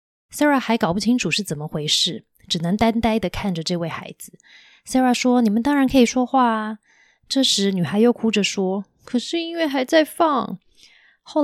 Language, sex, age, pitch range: Chinese, female, 20-39, 175-235 Hz